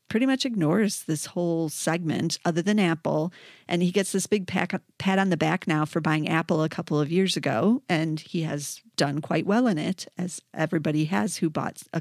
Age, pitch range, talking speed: 40-59, 160-190 Hz, 205 wpm